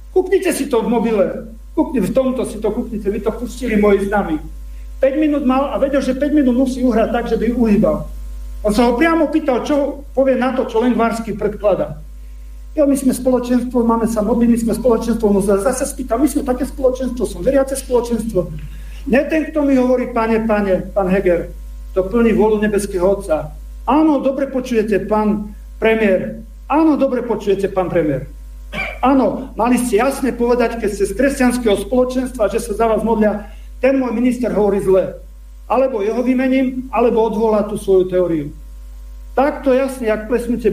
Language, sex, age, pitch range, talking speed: Slovak, male, 50-69, 195-255 Hz, 170 wpm